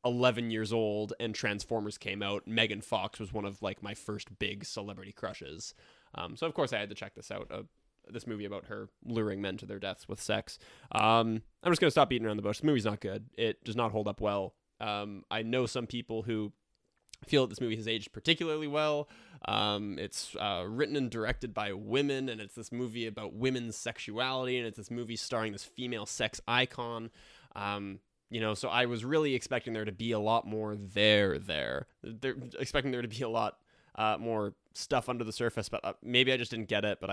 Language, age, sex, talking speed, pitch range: English, 20-39, male, 220 wpm, 105-125 Hz